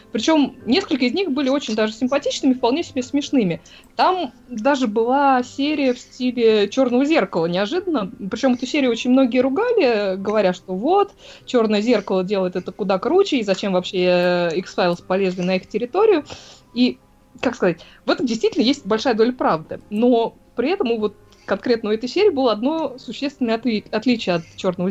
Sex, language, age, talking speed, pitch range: female, Russian, 20-39, 165 wpm, 200-280 Hz